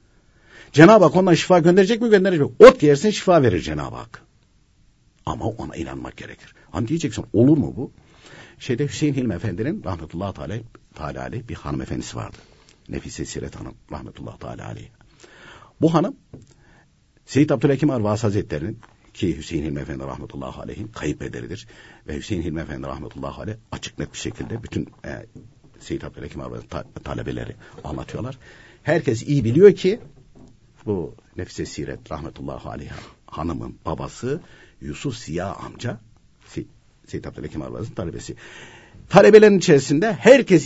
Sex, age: male, 60-79